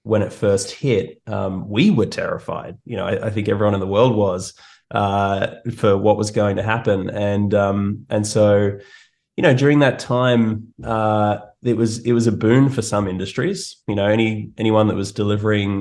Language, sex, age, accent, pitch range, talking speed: English, male, 20-39, Australian, 95-110 Hz, 195 wpm